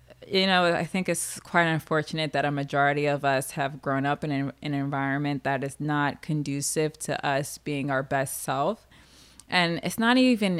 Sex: female